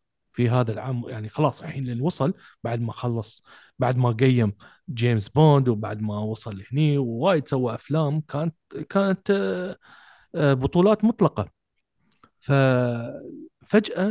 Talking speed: 115 wpm